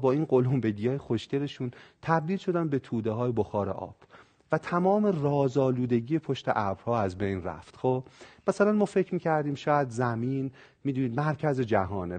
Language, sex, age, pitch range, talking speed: Persian, male, 40-59, 115-155 Hz, 145 wpm